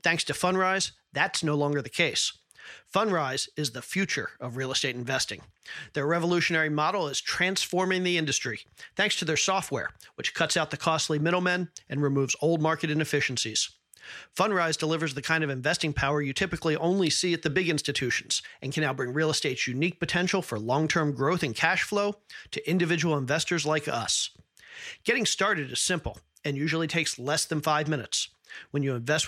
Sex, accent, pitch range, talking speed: male, American, 140-175 Hz, 175 wpm